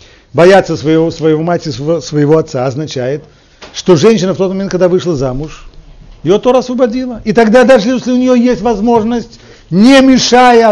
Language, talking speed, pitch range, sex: Russian, 160 wpm, 145-220 Hz, male